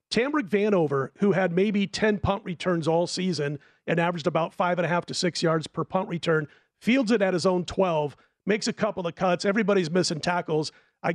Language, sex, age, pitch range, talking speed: English, male, 40-59, 170-205 Hz, 205 wpm